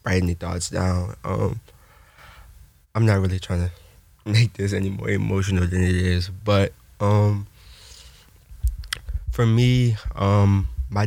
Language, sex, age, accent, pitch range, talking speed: English, male, 20-39, American, 90-100 Hz, 130 wpm